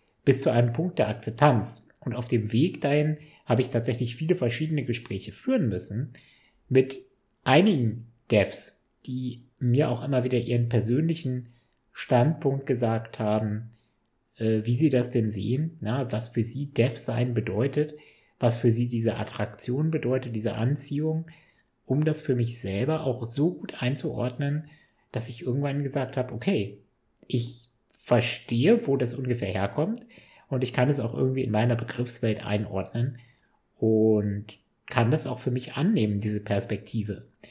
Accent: German